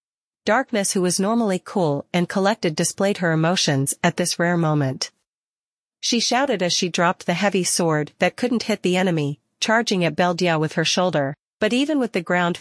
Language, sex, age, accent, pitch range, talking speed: English, female, 40-59, American, 160-205 Hz, 180 wpm